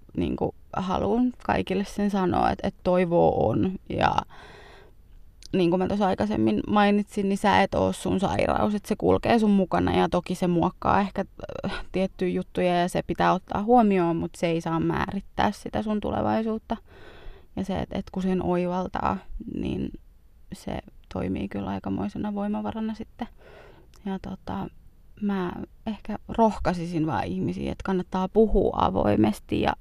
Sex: female